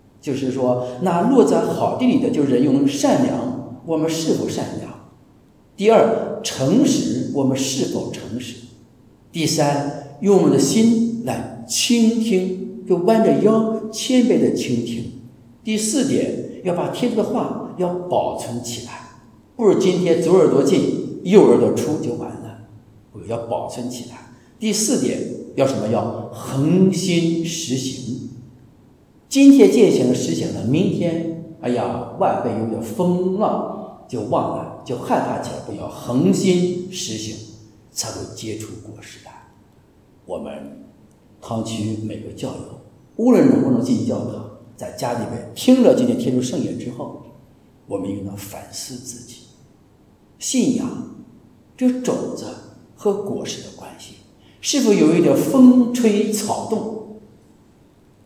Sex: male